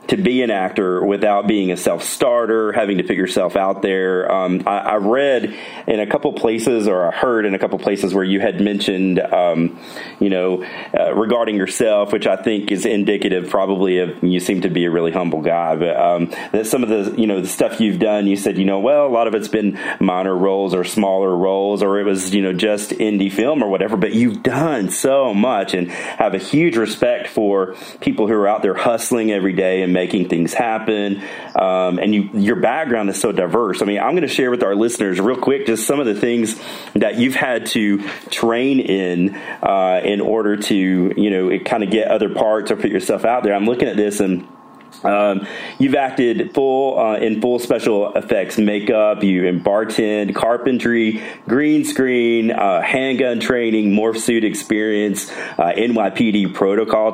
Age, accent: 30-49, American